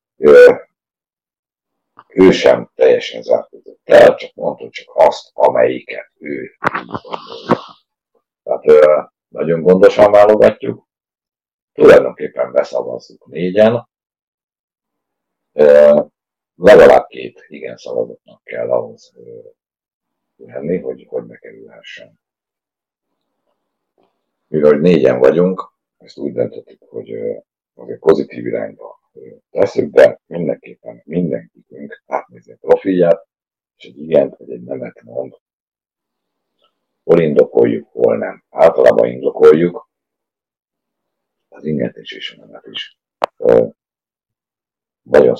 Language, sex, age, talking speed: Hungarian, male, 60-79, 90 wpm